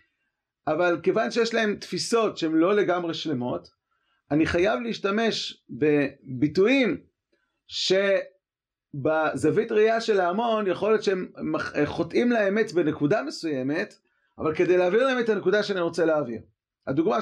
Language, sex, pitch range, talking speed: Hebrew, male, 145-210 Hz, 120 wpm